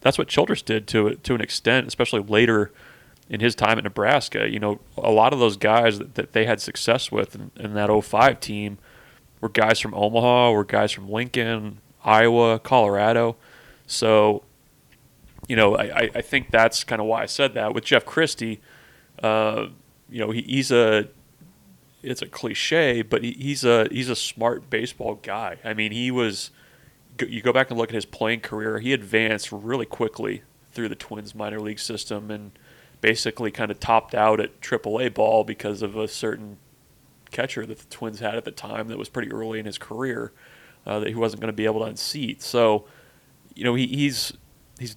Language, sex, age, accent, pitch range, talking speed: English, male, 30-49, American, 105-120 Hz, 195 wpm